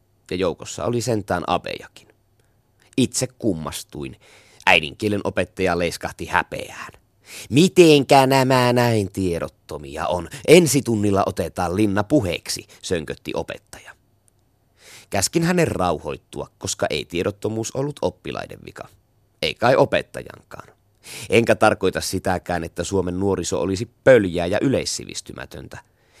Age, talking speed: 30-49, 105 wpm